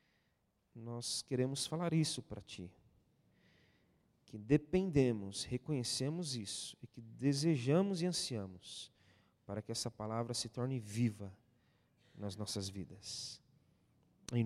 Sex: male